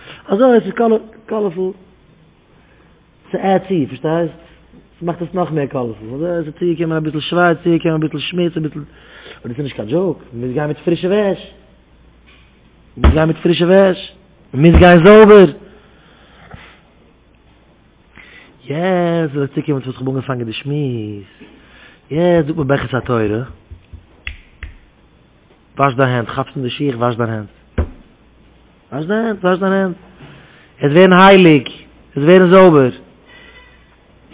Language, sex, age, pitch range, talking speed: English, male, 30-49, 130-180 Hz, 140 wpm